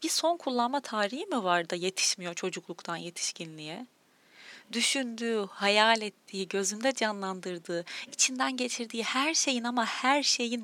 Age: 30-49